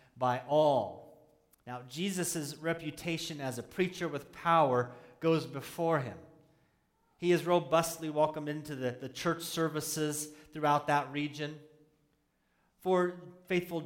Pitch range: 135-165 Hz